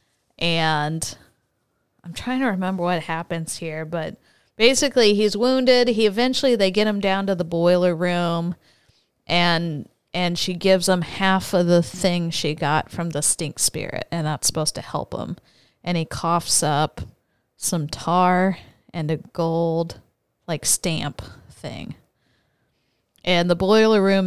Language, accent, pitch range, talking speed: English, American, 155-185 Hz, 145 wpm